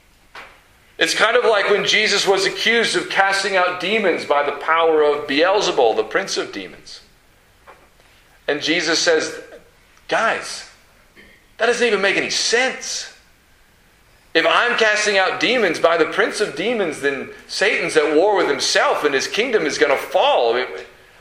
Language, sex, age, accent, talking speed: English, male, 40-59, American, 155 wpm